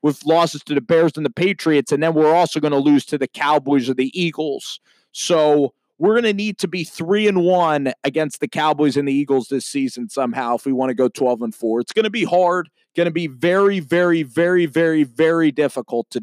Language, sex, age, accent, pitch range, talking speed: English, male, 30-49, American, 130-165 Hz, 235 wpm